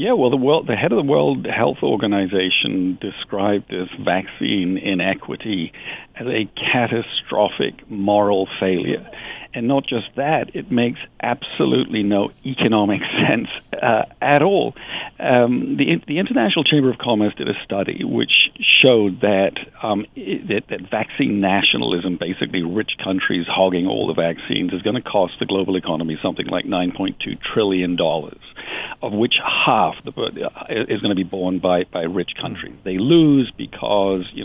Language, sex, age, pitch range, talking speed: English, male, 50-69, 90-120 Hz, 150 wpm